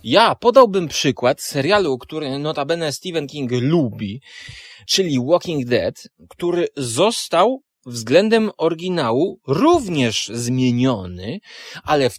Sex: male